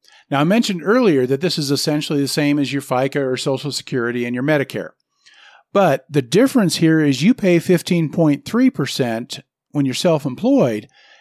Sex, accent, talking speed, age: male, American, 160 wpm, 50-69